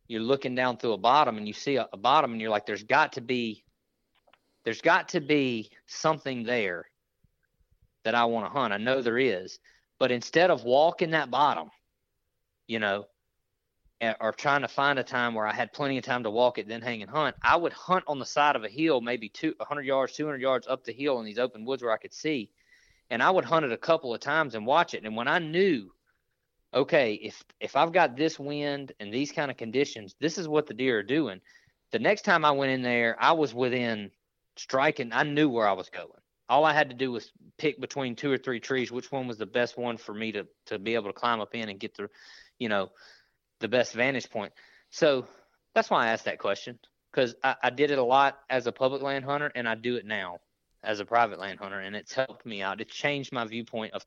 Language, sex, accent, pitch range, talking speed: English, male, American, 115-145 Hz, 240 wpm